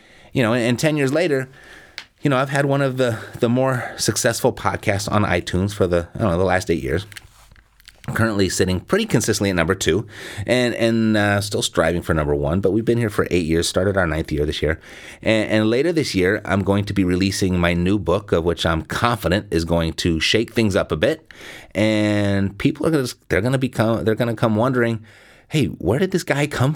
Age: 30-49